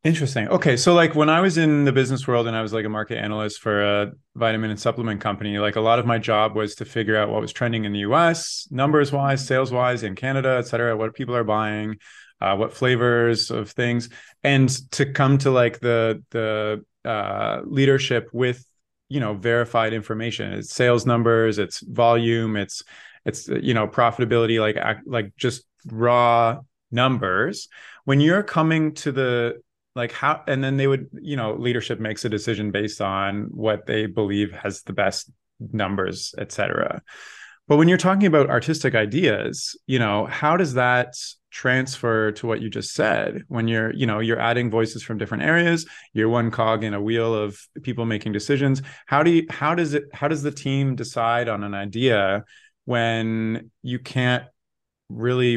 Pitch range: 110-135 Hz